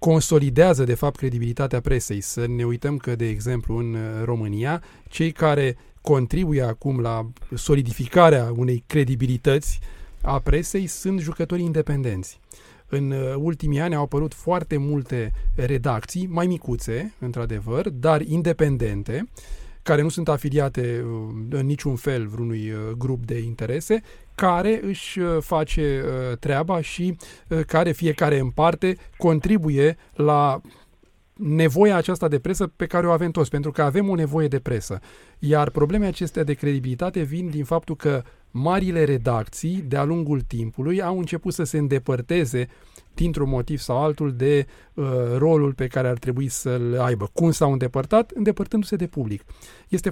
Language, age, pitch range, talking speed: Romanian, 30-49, 125-175 Hz, 140 wpm